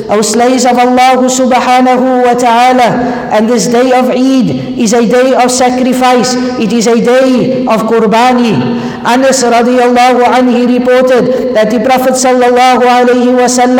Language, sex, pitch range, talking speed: English, female, 225-250 Hz, 135 wpm